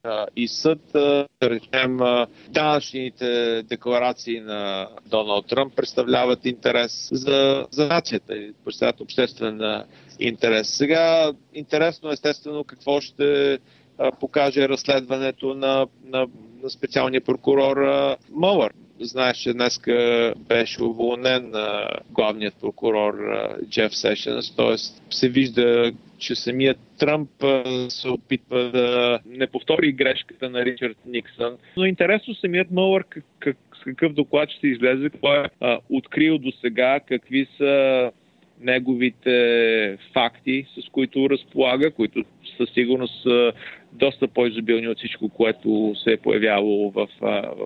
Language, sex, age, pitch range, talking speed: Bulgarian, male, 40-59, 120-140 Hz, 115 wpm